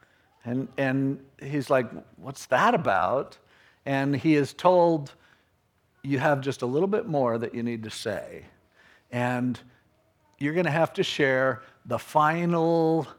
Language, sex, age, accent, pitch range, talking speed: English, male, 50-69, American, 125-165 Hz, 145 wpm